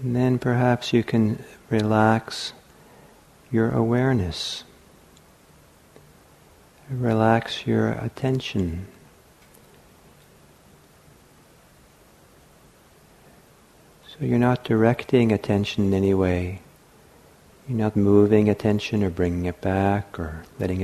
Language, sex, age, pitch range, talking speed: English, male, 50-69, 95-115 Hz, 85 wpm